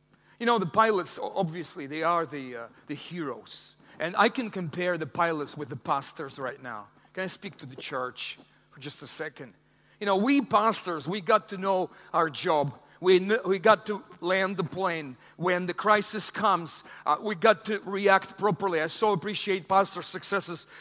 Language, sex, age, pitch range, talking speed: English, male, 40-59, 180-245 Hz, 185 wpm